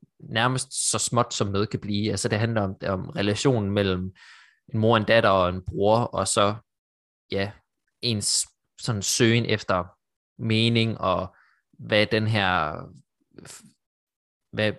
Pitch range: 100-120 Hz